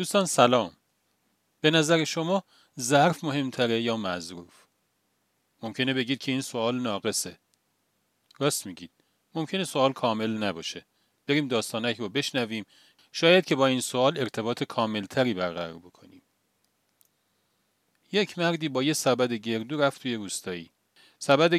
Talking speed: 120 wpm